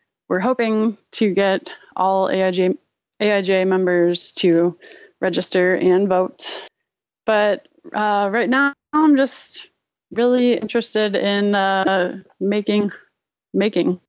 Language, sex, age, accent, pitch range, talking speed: English, female, 20-39, American, 185-220 Hz, 100 wpm